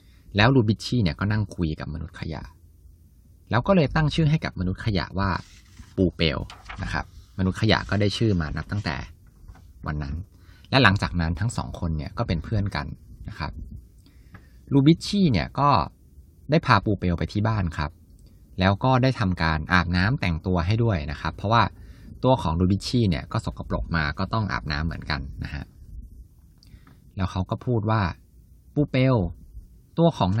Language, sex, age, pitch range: Thai, male, 20-39, 85-115 Hz